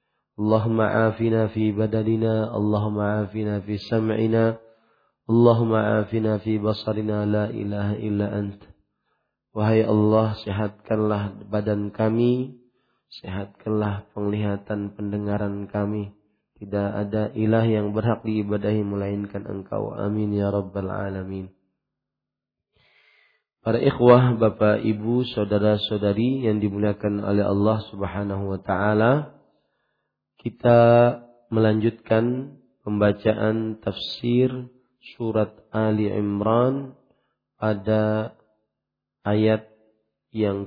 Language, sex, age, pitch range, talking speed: Malay, male, 30-49, 105-115 Hz, 85 wpm